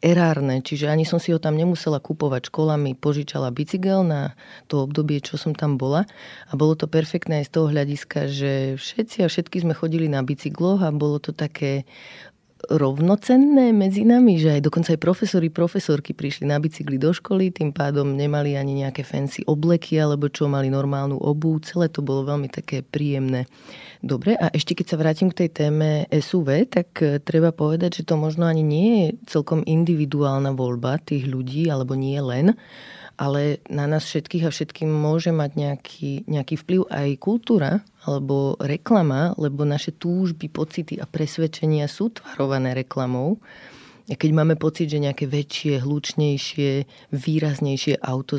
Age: 30-49